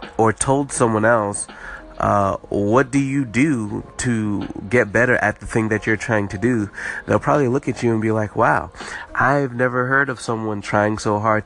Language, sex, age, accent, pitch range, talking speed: English, male, 30-49, American, 110-130 Hz, 195 wpm